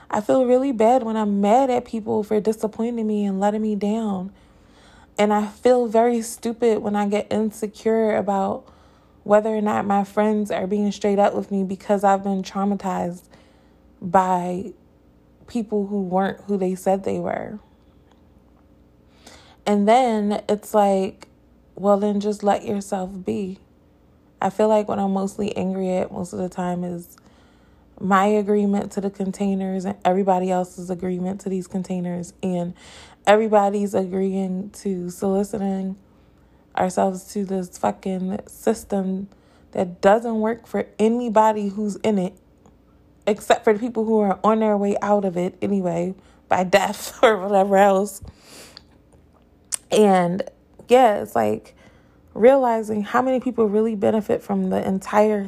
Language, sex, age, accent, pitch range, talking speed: English, female, 20-39, American, 185-215 Hz, 145 wpm